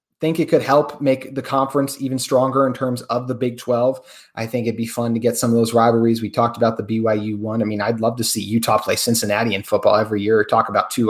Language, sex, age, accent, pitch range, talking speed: English, male, 30-49, American, 115-130 Hz, 260 wpm